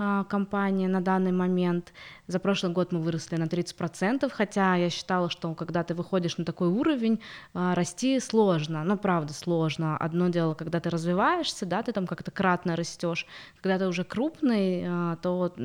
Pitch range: 170-205 Hz